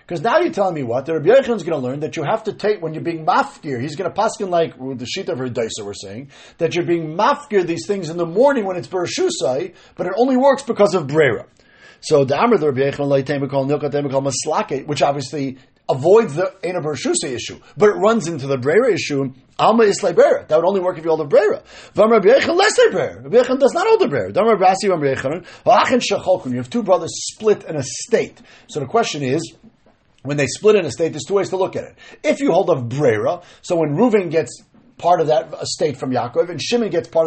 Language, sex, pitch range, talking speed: English, male, 155-230 Hz, 230 wpm